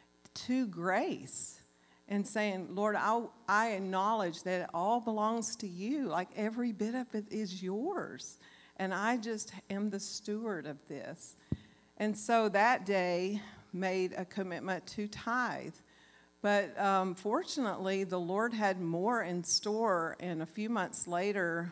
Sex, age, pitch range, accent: female, 50-69, 175-210 Hz, American